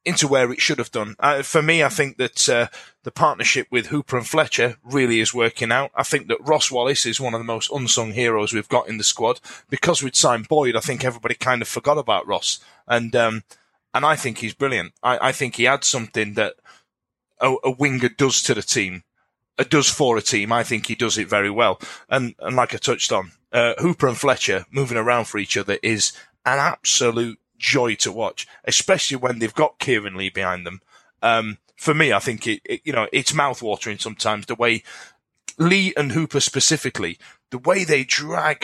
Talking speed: 210 wpm